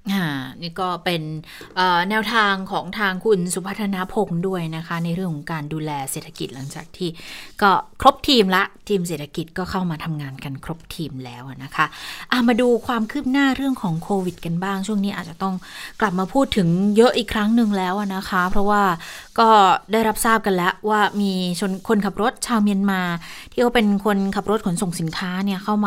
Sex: female